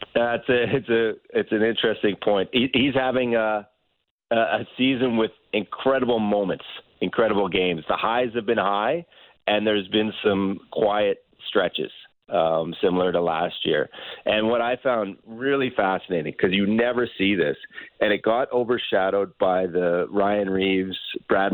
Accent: American